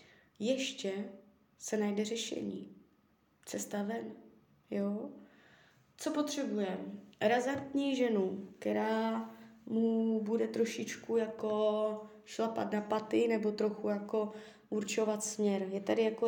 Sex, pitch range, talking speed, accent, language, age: female, 185-225 Hz, 100 wpm, native, Czech, 20-39